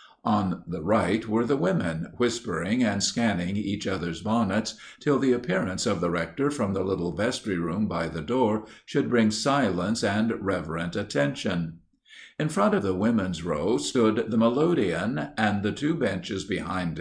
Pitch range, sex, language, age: 90-120 Hz, male, English, 50-69